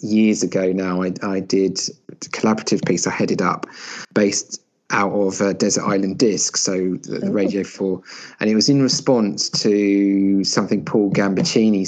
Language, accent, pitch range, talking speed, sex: English, British, 95-110 Hz, 165 wpm, male